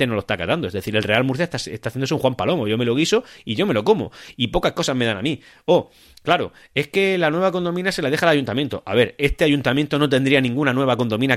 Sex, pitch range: male, 110-145 Hz